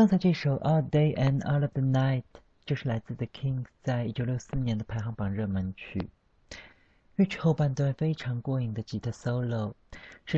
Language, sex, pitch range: Chinese, male, 110-140 Hz